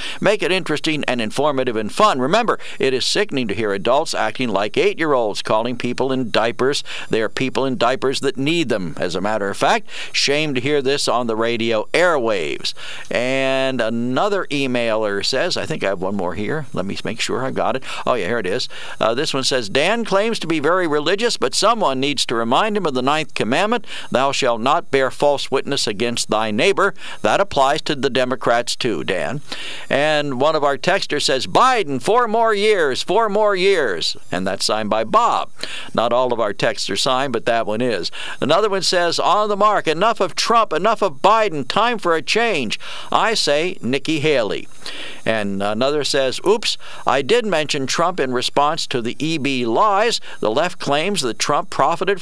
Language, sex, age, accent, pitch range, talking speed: English, male, 60-79, American, 120-185 Hz, 195 wpm